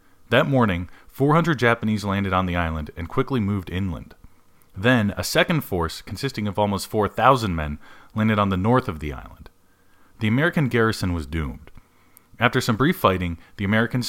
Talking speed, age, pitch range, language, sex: 165 wpm, 30-49, 85-110 Hz, English, male